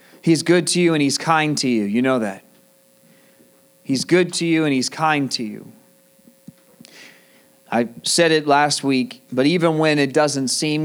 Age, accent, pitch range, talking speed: 30-49, American, 125-155 Hz, 175 wpm